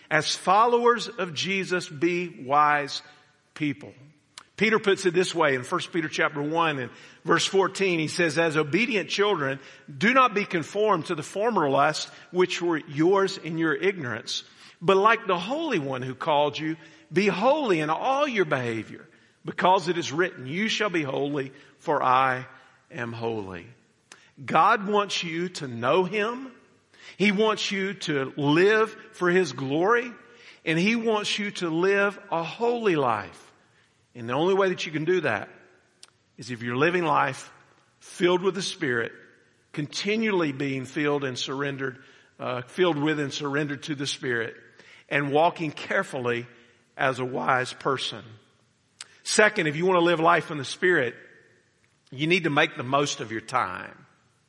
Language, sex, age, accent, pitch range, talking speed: English, male, 50-69, American, 135-190 Hz, 160 wpm